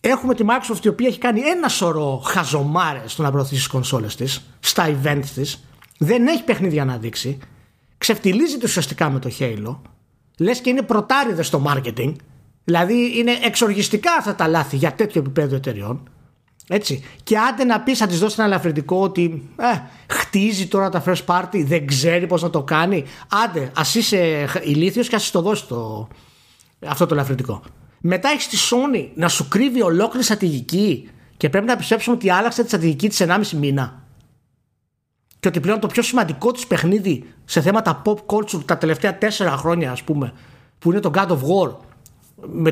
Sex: male